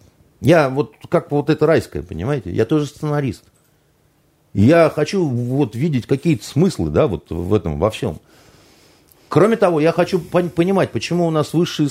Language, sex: Russian, male